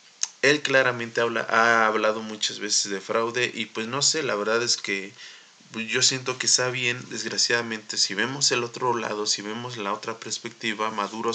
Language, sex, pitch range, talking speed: Spanish, male, 100-115 Hz, 180 wpm